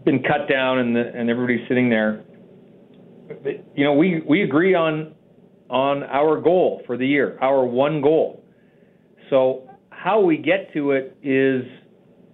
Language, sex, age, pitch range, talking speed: English, male, 40-59, 130-175 Hz, 155 wpm